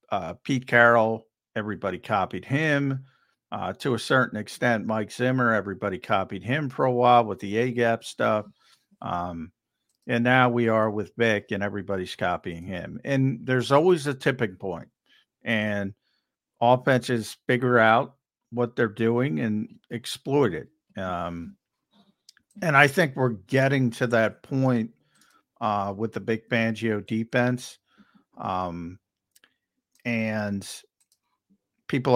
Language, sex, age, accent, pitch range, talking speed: English, male, 50-69, American, 105-130 Hz, 130 wpm